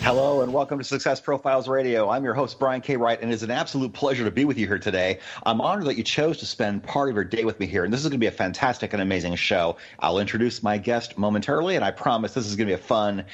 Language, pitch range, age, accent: English, 100-135 Hz, 30-49, American